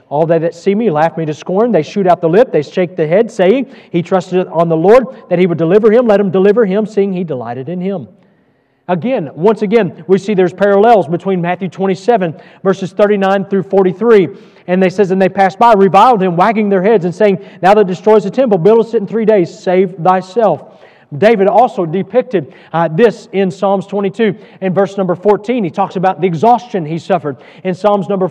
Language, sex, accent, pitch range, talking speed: English, male, American, 175-210 Hz, 210 wpm